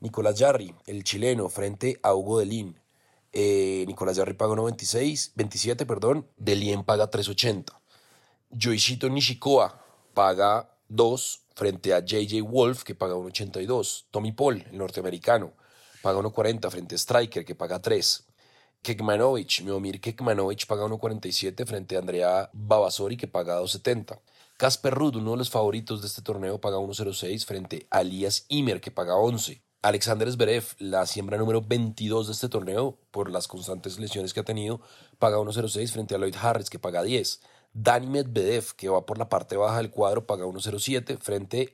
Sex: male